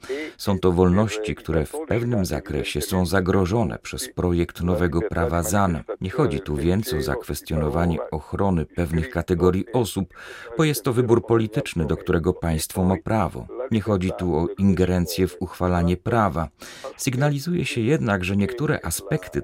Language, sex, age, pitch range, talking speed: Polish, male, 40-59, 90-120 Hz, 150 wpm